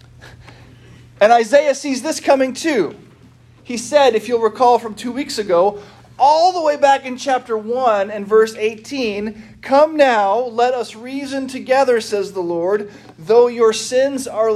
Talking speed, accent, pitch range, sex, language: 155 wpm, American, 155-240 Hz, male, English